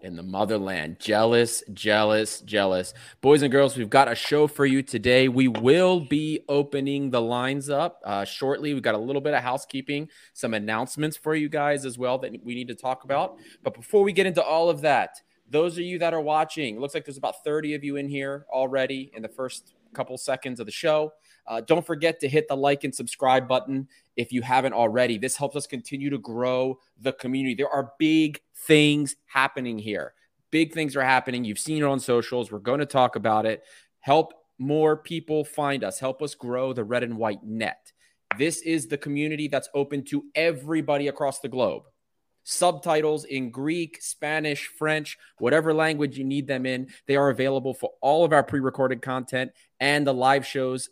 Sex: male